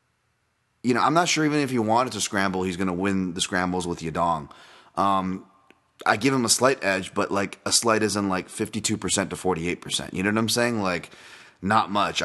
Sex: male